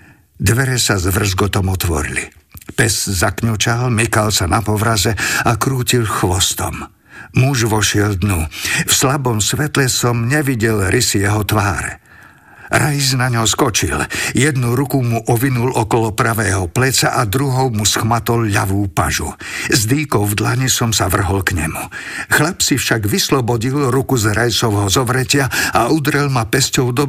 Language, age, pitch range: Slovak, 50-69, 105-125 Hz